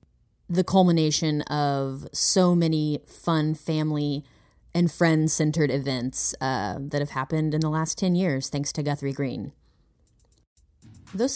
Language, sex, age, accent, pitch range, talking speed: English, female, 20-39, American, 140-175 Hz, 130 wpm